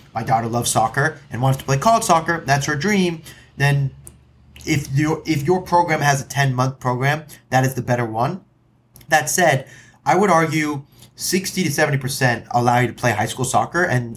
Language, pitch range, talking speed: English, 115-145 Hz, 195 wpm